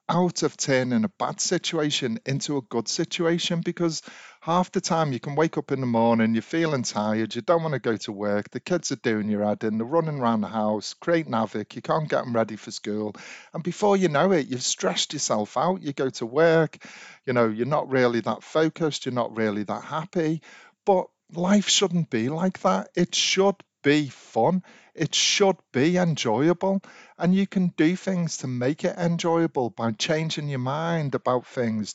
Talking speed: 200 wpm